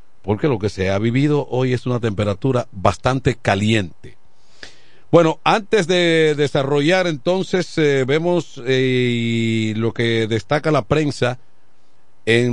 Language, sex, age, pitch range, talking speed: Spanish, male, 50-69, 110-140 Hz, 125 wpm